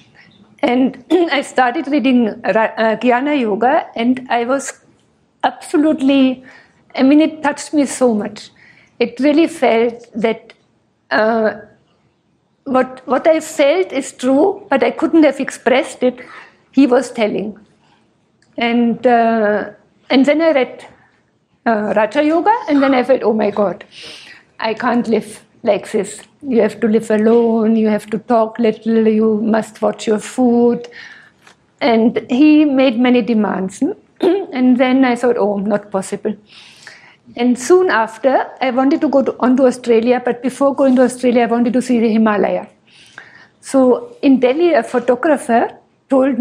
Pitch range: 225-275 Hz